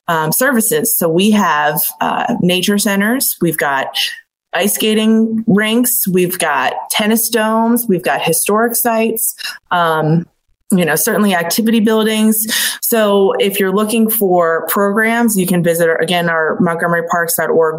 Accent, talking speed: American, 130 wpm